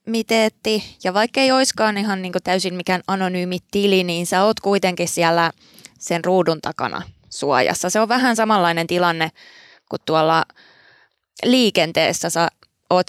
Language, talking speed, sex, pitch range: Finnish, 140 wpm, female, 170-200 Hz